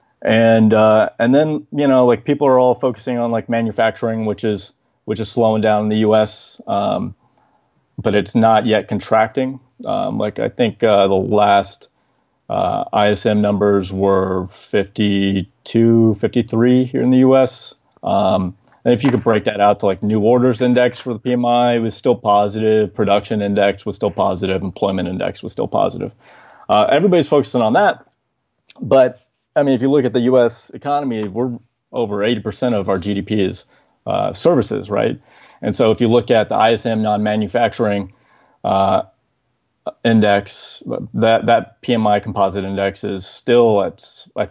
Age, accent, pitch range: 30-49, American, 100-120 Hz